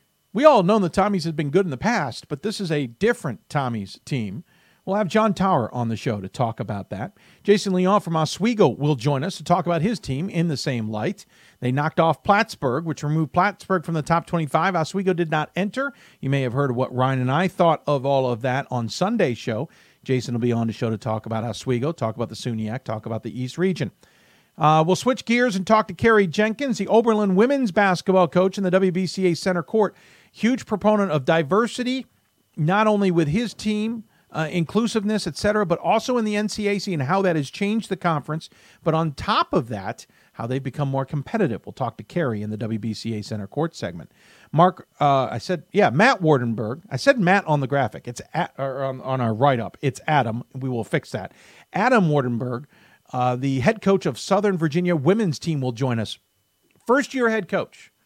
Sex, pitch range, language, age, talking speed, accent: male, 130-195 Hz, English, 50-69, 205 wpm, American